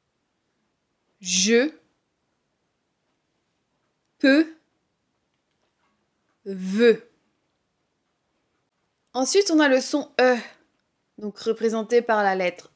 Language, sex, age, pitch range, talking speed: French, female, 20-39, 210-275 Hz, 65 wpm